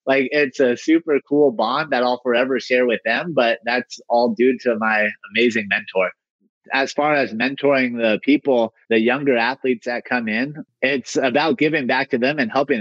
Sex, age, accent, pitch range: male, 30-49, American, 125-160 Hz